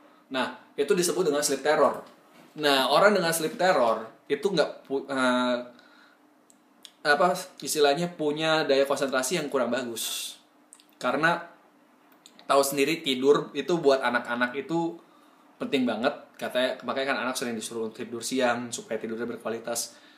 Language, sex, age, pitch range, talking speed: Indonesian, male, 20-39, 125-160 Hz, 130 wpm